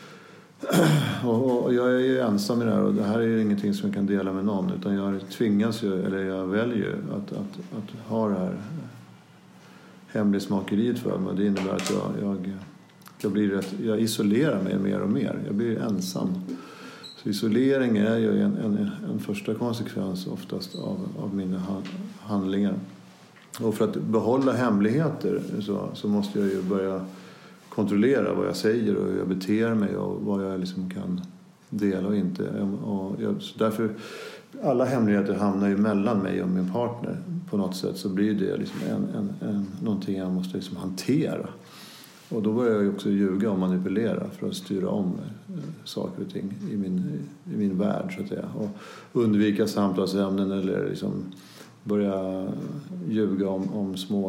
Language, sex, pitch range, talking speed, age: Swedish, male, 95-115 Hz, 175 wpm, 50-69